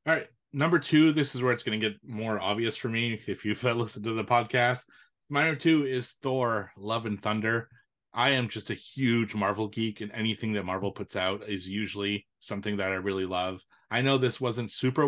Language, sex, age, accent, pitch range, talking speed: English, male, 30-49, American, 100-125 Hz, 215 wpm